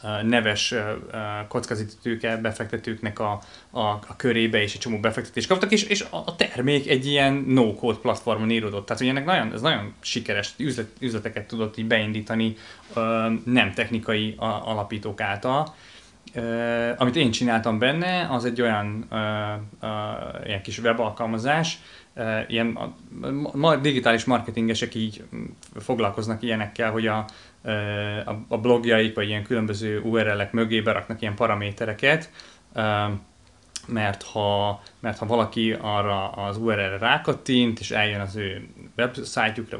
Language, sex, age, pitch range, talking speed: Hungarian, male, 20-39, 105-125 Hz, 120 wpm